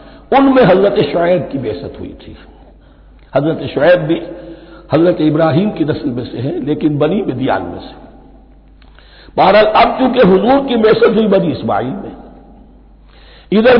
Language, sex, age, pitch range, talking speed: Hindi, male, 60-79, 150-220 Hz, 150 wpm